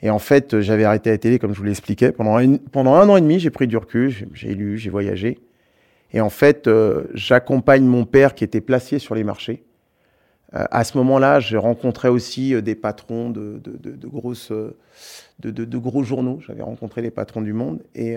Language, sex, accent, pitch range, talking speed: French, male, French, 110-130 Hz, 220 wpm